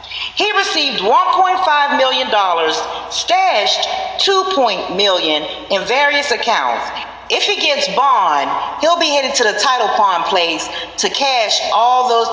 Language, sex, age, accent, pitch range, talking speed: English, female, 40-59, American, 210-275 Hz, 125 wpm